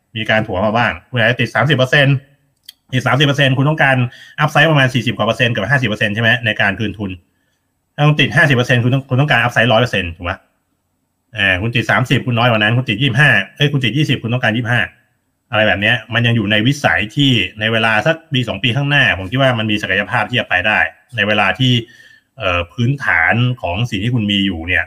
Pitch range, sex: 100-125 Hz, male